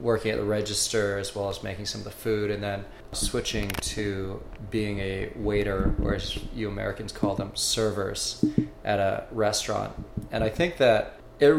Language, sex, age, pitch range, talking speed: English, male, 20-39, 100-120 Hz, 175 wpm